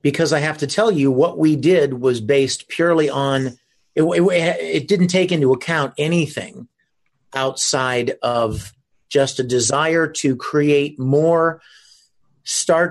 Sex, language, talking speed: male, English, 140 wpm